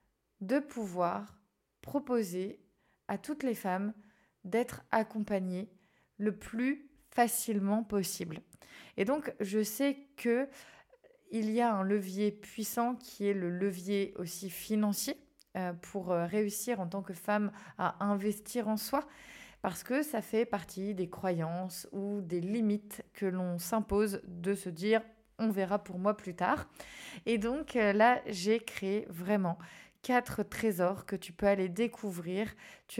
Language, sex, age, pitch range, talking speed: French, female, 20-39, 185-215 Hz, 140 wpm